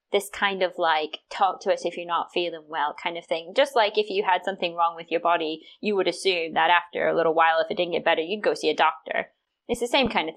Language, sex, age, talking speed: English, female, 20-39, 280 wpm